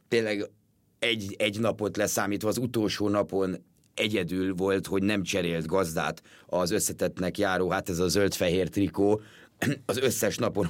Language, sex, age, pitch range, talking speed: Hungarian, male, 30-49, 100-120 Hz, 140 wpm